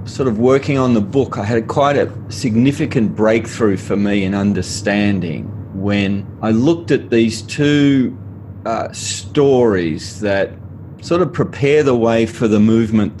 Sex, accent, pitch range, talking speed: male, Australian, 100-120 Hz, 150 wpm